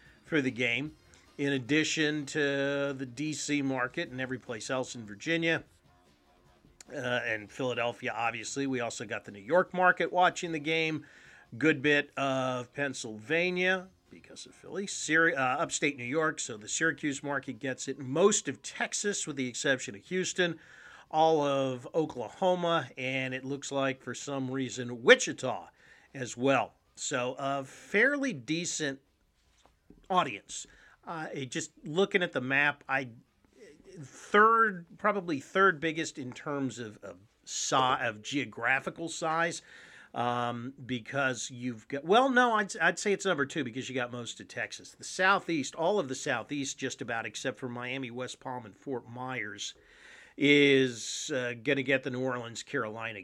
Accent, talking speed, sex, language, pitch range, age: American, 150 wpm, male, English, 125-160 Hz, 40-59